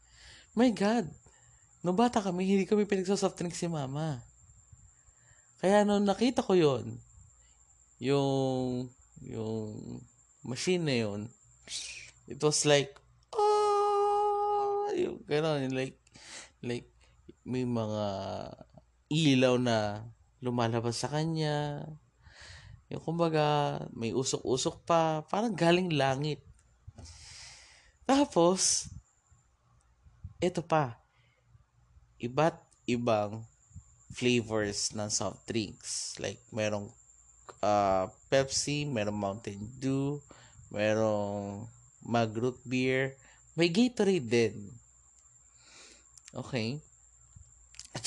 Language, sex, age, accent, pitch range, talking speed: Filipino, male, 20-39, native, 105-155 Hz, 85 wpm